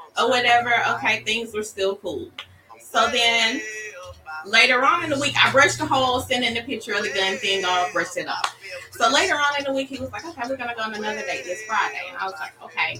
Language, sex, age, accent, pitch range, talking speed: English, female, 30-49, American, 185-295 Hz, 245 wpm